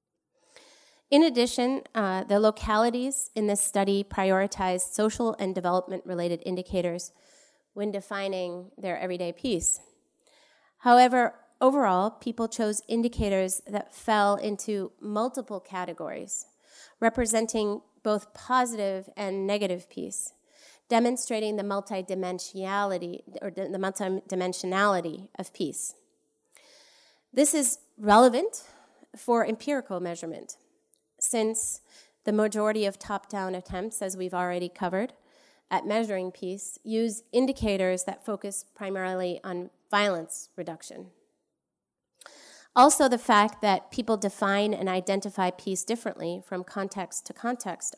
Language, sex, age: English, female, 30-49